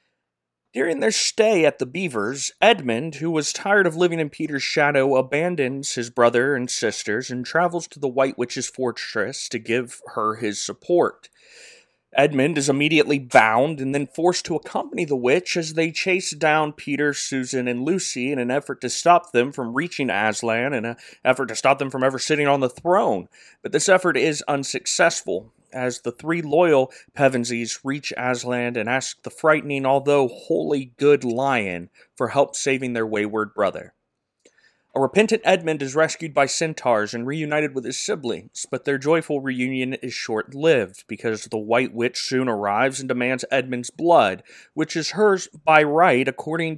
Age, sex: 30-49, male